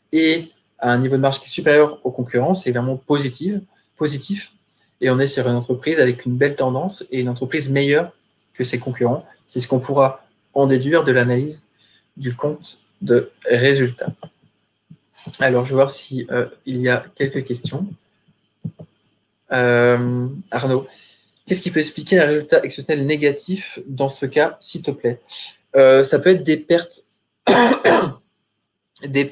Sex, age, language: male, 20-39, French